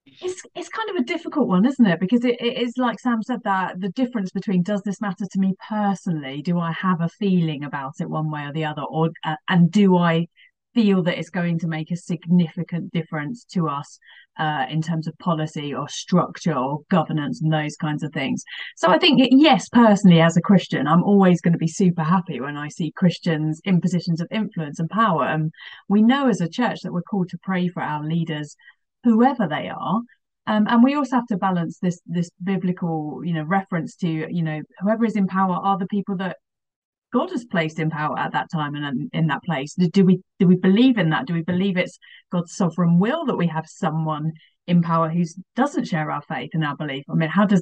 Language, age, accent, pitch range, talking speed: English, 30-49, British, 160-205 Hz, 225 wpm